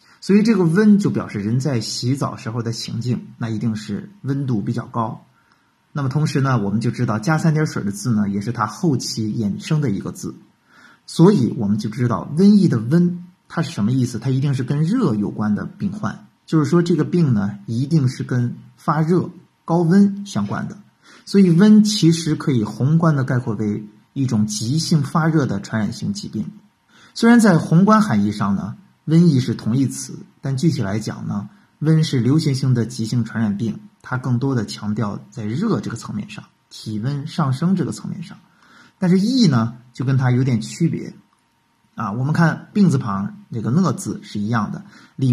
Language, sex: Chinese, male